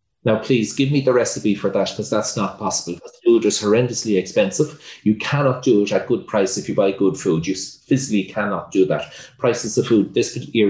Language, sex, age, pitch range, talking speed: English, male, 30-49, 105-135 Hz, 215 wpm